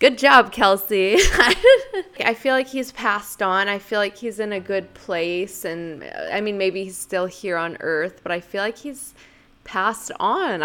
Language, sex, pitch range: English, female, 190-235 Hz